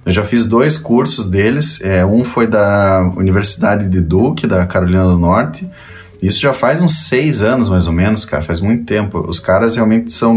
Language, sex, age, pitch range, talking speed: Portuguese, male, 20-39, 90-115 Hz, 190 wpm